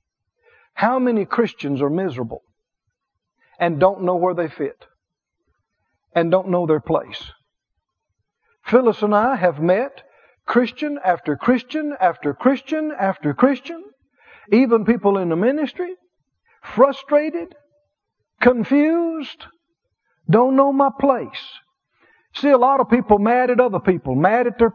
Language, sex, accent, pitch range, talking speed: English, male, American, 190-265 Hz, 125 wpm